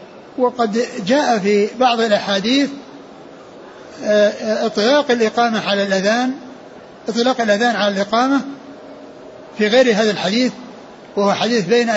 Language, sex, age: Arabic, male, 60-79